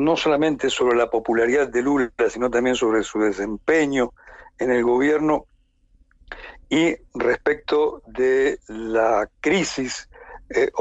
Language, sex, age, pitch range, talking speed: Spanish, male, 60-79, 120-190 Hz, 115 wpm